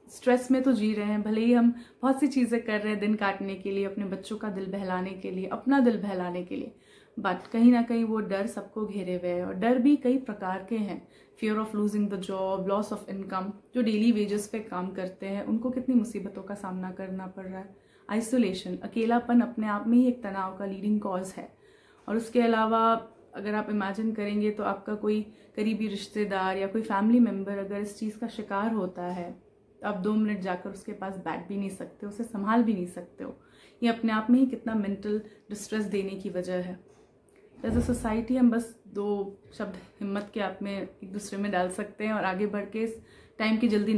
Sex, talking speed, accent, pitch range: female, 155 wpm, Indian, 195-225 Hz